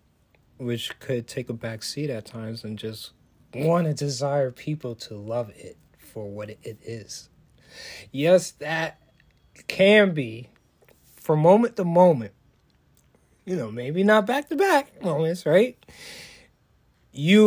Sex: male